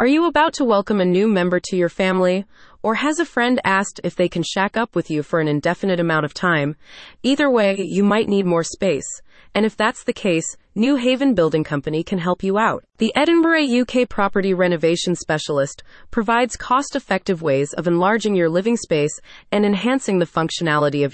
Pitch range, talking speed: 170-235 Hz, 195 wpm